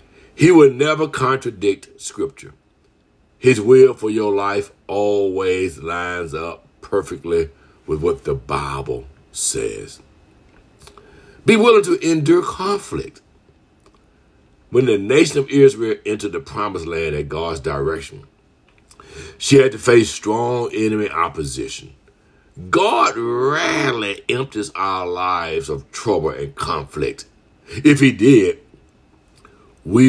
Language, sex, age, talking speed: English, male, 60-79, 110 wpm